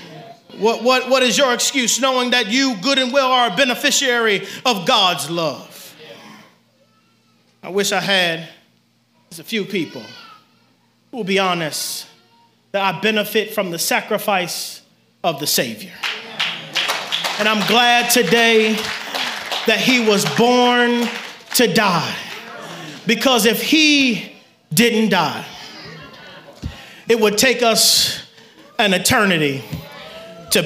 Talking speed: 115 wpm